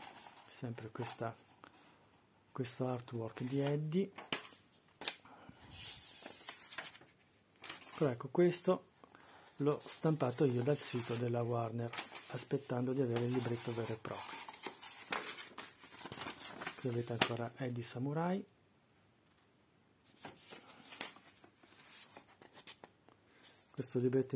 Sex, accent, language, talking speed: male, native, Italian, 75 wpm